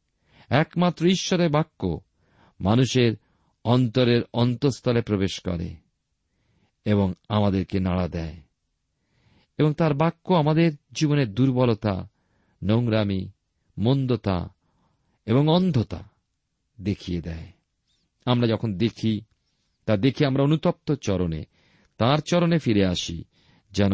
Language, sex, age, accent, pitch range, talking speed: Bengali, male, 50-69, native, 95-140 Hz, 95 wpm